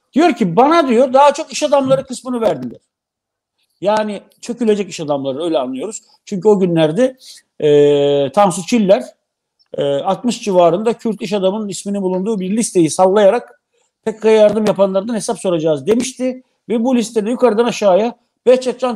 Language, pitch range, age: Turkish, 200-250 Hz, 50-69